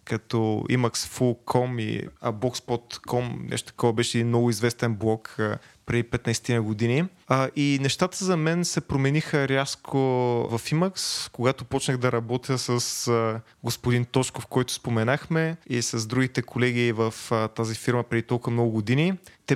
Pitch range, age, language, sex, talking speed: 120-140 Hz, 20-39, Bulgarian, male, 130 wpm